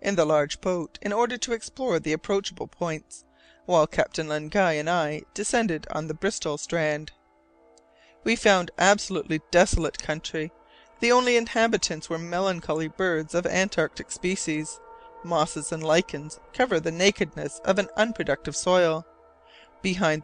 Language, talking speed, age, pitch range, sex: English, 135 wpm, 40-59, 155-215 Hz, female